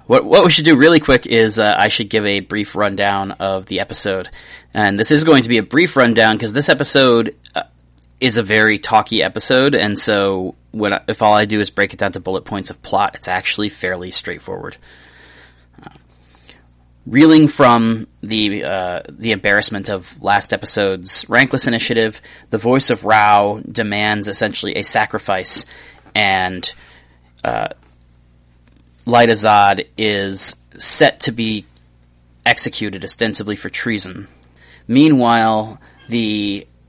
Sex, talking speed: male, 145 wpm